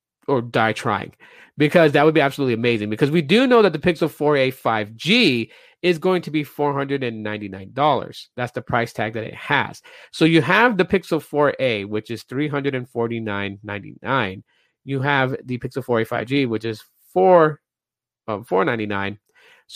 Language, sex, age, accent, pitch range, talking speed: English, male, 30-49, American, 120-155 Hz, 150 wpm